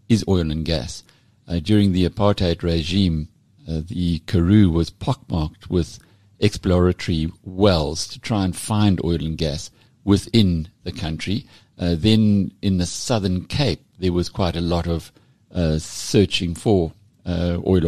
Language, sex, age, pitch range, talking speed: English, male, 60-79, 90-110 Hz, 150 wpm